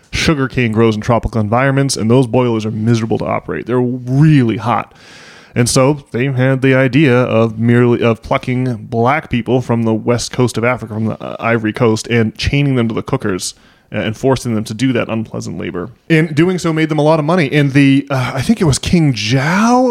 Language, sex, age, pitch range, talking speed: English, male, 20-39, 115-140 Hz, 210 wpm